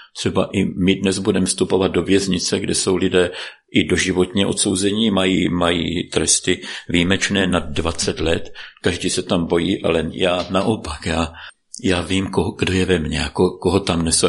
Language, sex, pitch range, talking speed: Slovak, male, 90-105 Hz, 165 wpm